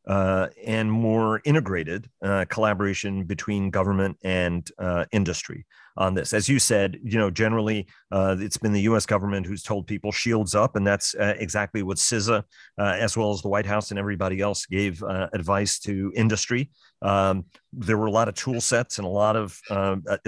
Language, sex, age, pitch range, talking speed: English, male, 40-59, 100-125 Hz, 190 wpm